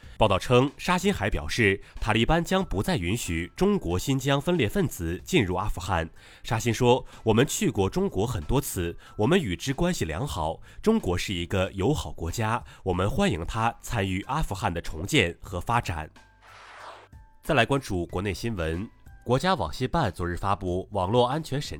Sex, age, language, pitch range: male, 30-49, Chinese, 90-135 Hz